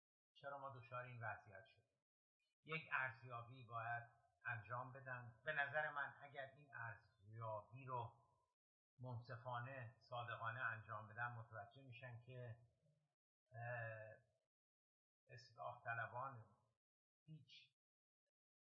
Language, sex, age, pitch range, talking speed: Persian, male, 50-69, 110-130 Hz, 90 wpm